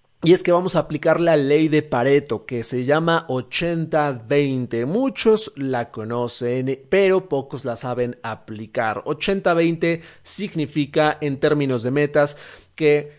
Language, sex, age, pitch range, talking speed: Spanish, male, 40-59, 135-170 Hz, 130 wpm